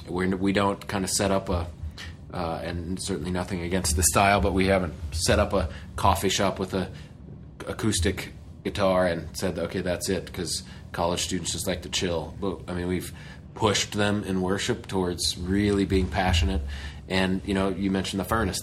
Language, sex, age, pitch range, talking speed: English, male, 30-49, 85-100 Hz, 185 wpm